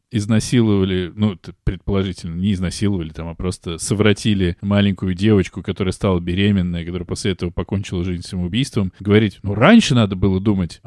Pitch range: 95-115 Hz